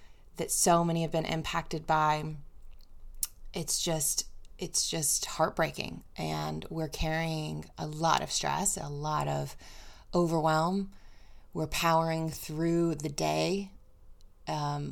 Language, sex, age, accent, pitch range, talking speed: English, female, 20-39, American, 140-165 Hz, 115 wpm